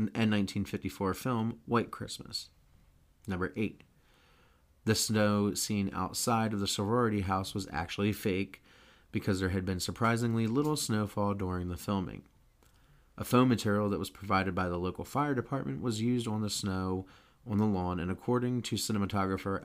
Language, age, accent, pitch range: English, 30-49, American, 95-115 Hz